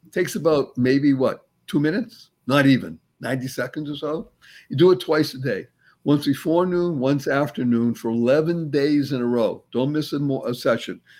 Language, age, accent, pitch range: English, 60-79, American, 125-165 Hz